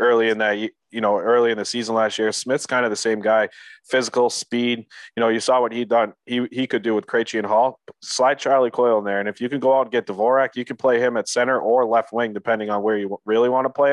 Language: English